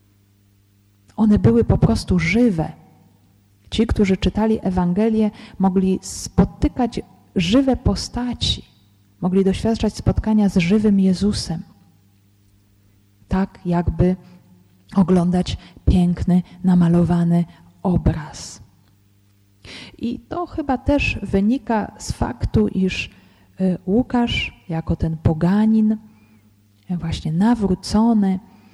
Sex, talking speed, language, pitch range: female, 80 wpm, Polish, 155-215 Hz